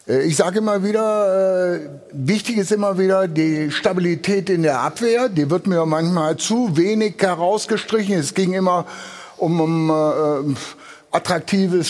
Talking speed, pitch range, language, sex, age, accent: 125 wpm, 170-205 Hz, German, male, 60-79, German